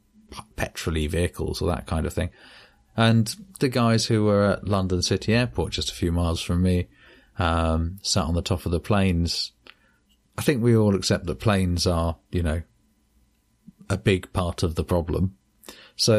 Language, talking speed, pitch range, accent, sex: English, 175 wpm, 90-110 Hz, British, male